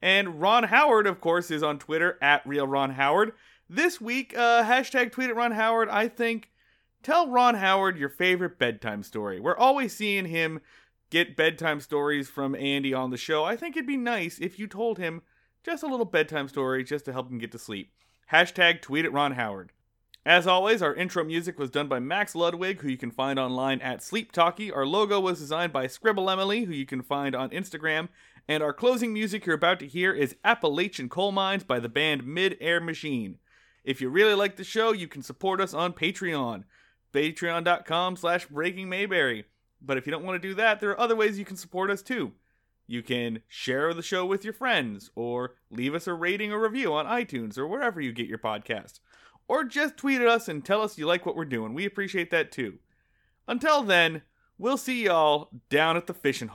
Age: 30-49